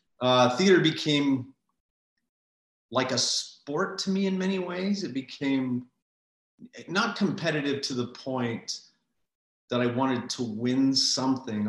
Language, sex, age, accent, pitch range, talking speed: English, male, 40-59, American, 110-135 Hz, 125 wpm